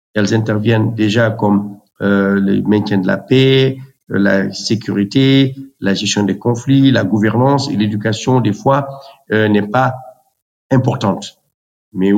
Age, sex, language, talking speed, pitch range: 50-69, male, French, 140 wpm, 105-125 Hz